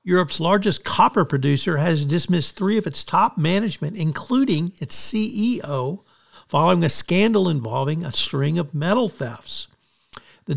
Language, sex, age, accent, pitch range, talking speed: English, male, 50-69, American, 145-190 Hz, 135 wpm